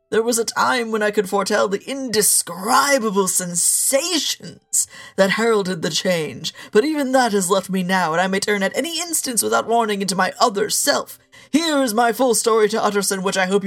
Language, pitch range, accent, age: English, 190-240 Hz, American, 40-59